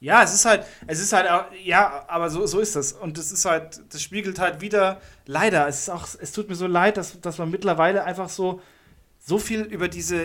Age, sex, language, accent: 30-49, male, German, German